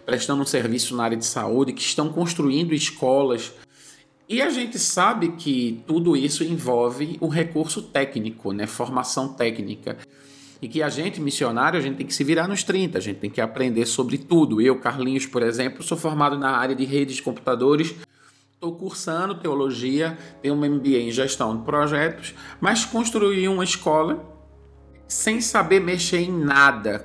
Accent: Brazilian